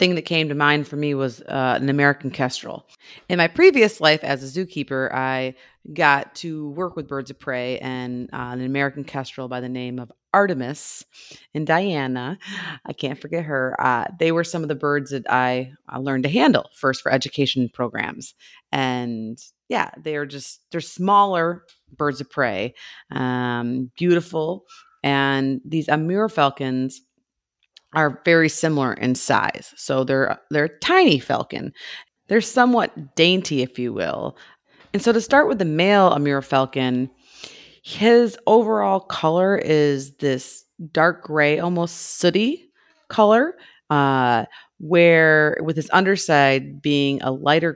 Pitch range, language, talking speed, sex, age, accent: 135-175 Hz, English, 150 wpm, female, 30-49, American